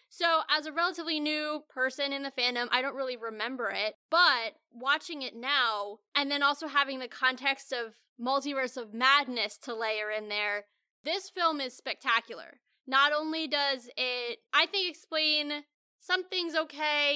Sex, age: female, 10-29